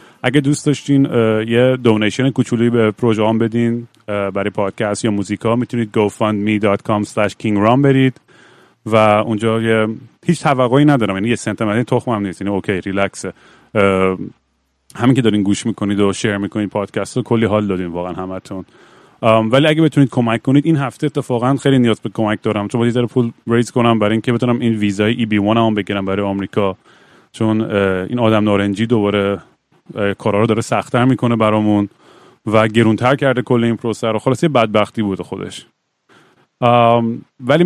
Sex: male